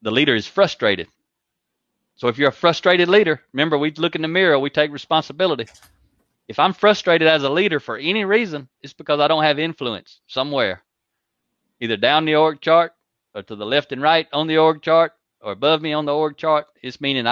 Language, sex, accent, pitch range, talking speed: English, male, American, 115-150 Hz, 205 wpm